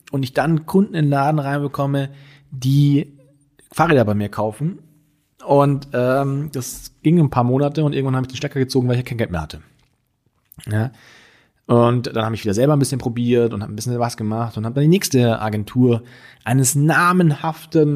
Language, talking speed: German, 190 wpm